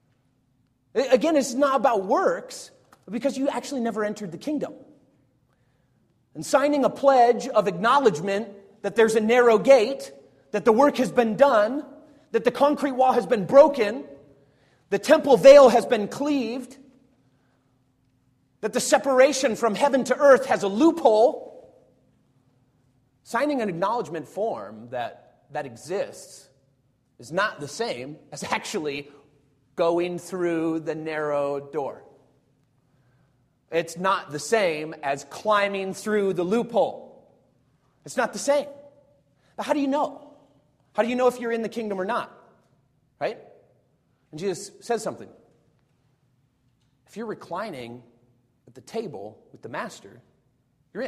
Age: 30-49